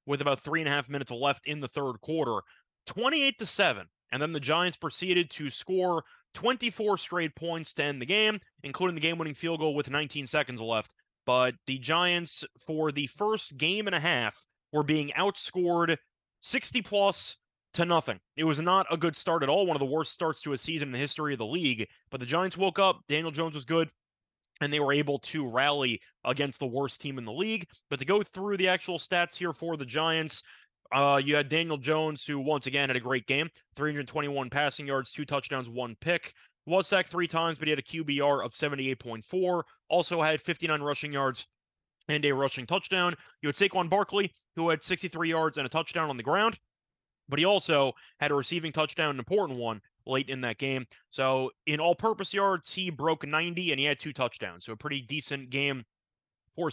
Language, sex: English, male